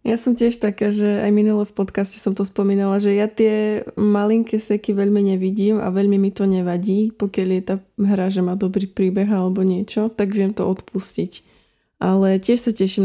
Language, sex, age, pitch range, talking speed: Slovak, female, 20-39, 190-215 Hz, 195 wpm